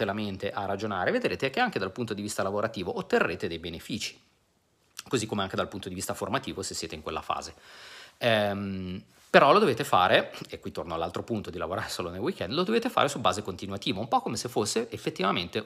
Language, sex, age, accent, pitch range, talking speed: Italian, male, 40-59, native, 95-120 Hz, 205 wpm